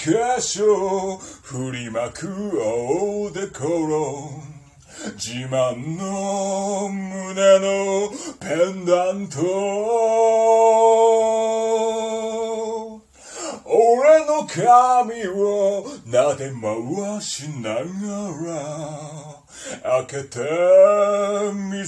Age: 40-59